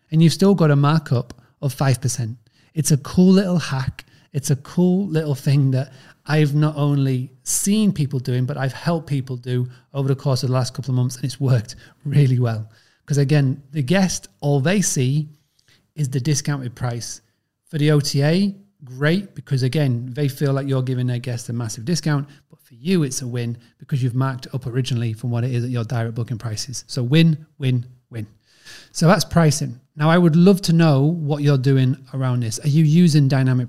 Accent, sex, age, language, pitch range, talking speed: British, male, 30-49, English, 125-155 Hz, 200 wpm